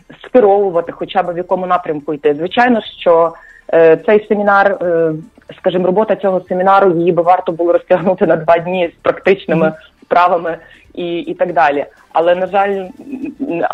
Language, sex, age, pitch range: English, female, 30-49, 165-190 Hz